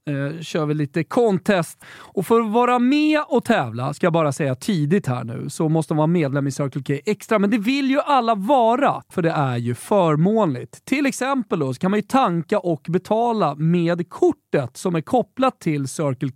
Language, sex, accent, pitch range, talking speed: Swedish, male, native, 145-215 Hz, 205 wpm